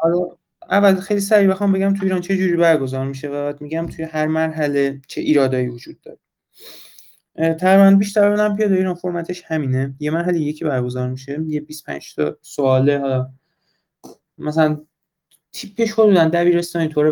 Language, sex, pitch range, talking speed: Persian, male, 150-180 Hz, 145 wpm